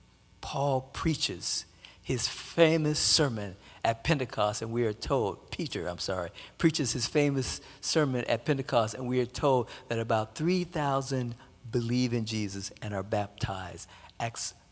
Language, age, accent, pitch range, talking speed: English, 50-69, American, 105-140 Hz, 140 wpm